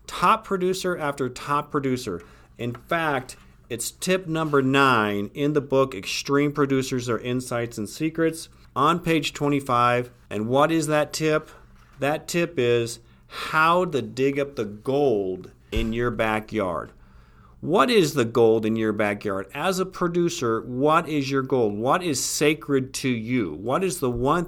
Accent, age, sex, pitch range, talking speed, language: American, 40-59, male, 110-150 Hz, 155 wpm, English